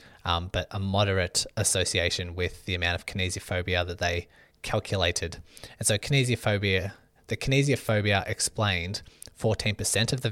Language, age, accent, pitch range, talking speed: English, 20-39, Australian, 95-110 Hz, 130 wpm